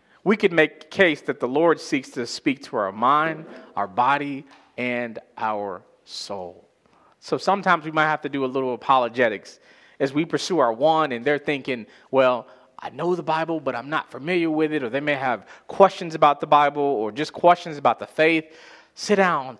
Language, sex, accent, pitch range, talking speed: English, male, American, 120-175 Hz, 195 wpm